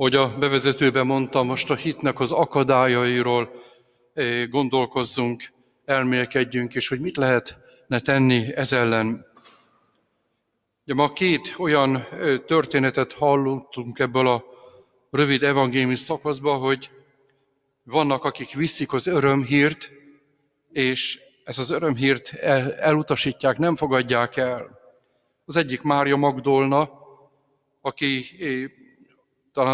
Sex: male